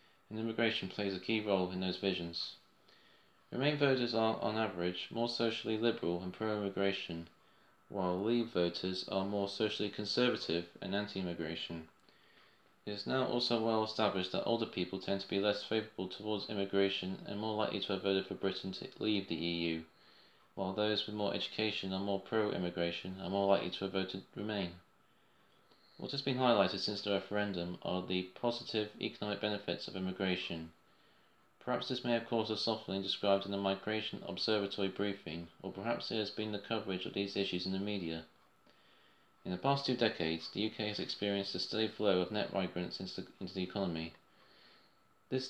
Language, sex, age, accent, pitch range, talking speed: English, male, 20-39, British, 95-110 Hz, 175 wpm